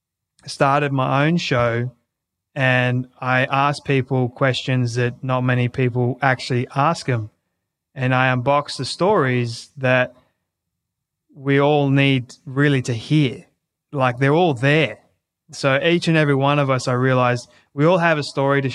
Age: 20-39